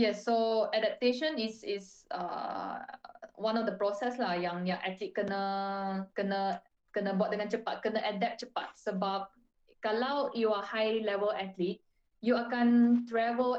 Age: 20-39